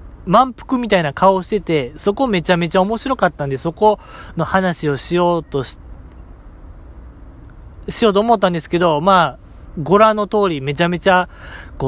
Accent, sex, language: native, male, Japanese